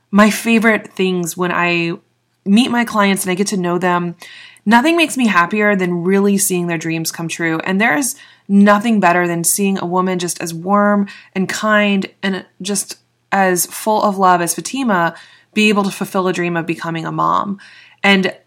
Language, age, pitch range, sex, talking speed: English, 20-39, 180-220 Hz, female, 185 wpm